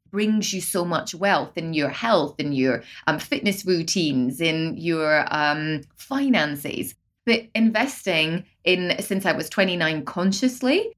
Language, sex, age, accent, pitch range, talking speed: English, female, 20-39, British, 155-215 Hz, 140 wpm